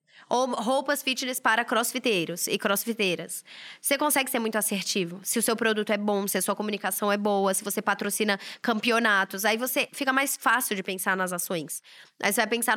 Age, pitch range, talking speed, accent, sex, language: 10-29, 205-245 Hz, 195 wpm, Brazilian, female, Portuguese